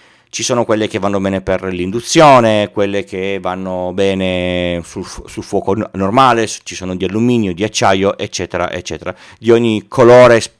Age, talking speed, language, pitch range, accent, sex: 30-49, 145 wpm, Italian, 100-130 Hz, native, male